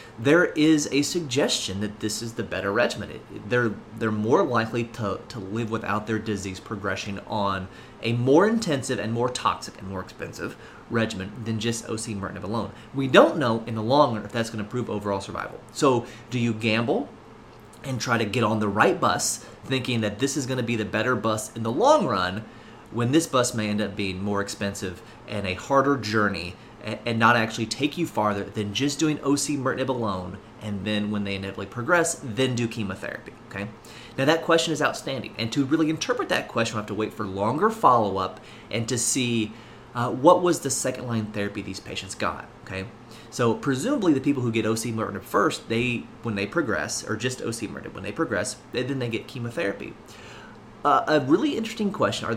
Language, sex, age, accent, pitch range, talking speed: English, male, 30-49, American, 105-130 Hz, 195 wpm